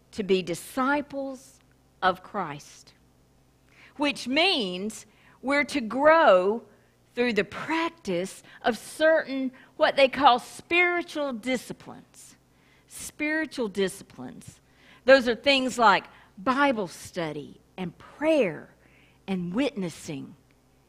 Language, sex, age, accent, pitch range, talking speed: English, female, 50-69, American, 170-260 Hz, 90 wpm